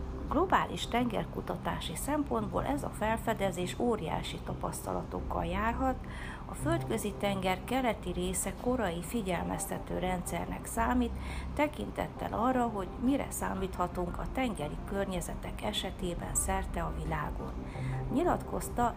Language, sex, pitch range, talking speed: Hungarian, female, 165-245 Hz, 100 wpm